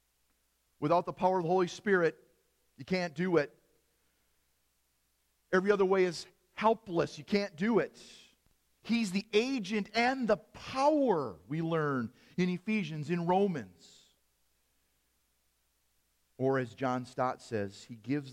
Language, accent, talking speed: English, American, 130 wpm